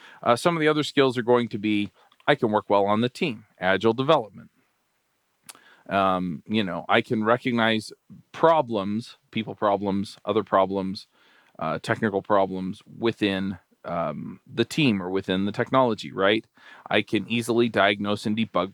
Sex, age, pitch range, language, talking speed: male, 40-59, 100-125 Hz, English, 155 wpm